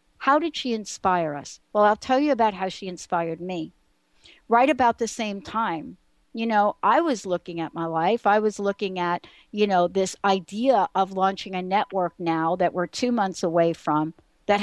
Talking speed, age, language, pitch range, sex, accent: 195 wpm, 60-79, English, 175-225 Hz, female, American